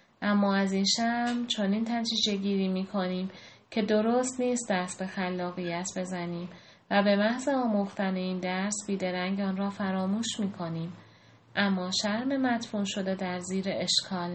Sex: female